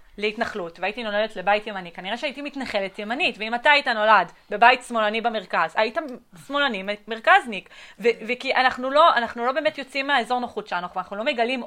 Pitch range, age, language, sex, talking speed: 200-270 Hz, 20-39, Hebrew, female, 175 wpm